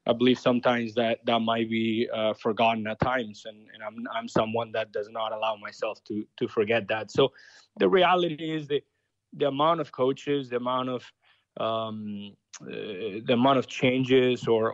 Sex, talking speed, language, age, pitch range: male, 180 wpm, English, 30-49, 110-130 Hz